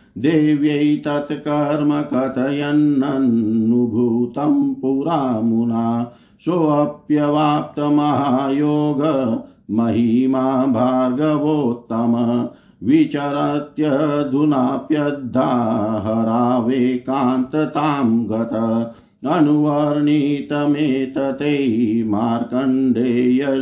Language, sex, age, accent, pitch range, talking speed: Hindi, male, 50-69, native, 120-145 Hz, 30 wpm